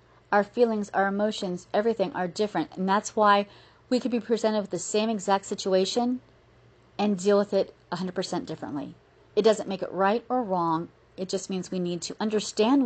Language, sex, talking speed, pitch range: English, female, 180 wpm, 180-225 Hz